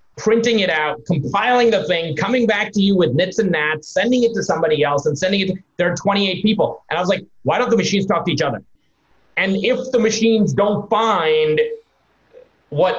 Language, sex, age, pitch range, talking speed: English, male, 30-49, 155-220 Hz, 210 wpm